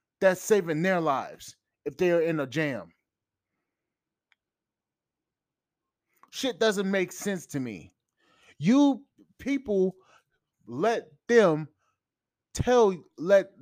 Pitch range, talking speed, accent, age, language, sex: 145-195 Hz, 95 wpm, American, 20-39, English, male